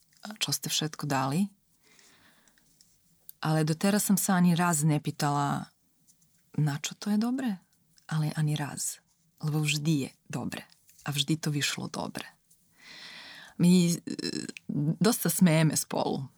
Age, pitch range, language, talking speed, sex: 20-39, 155-200 Hz, Slovak, 120 wpm, female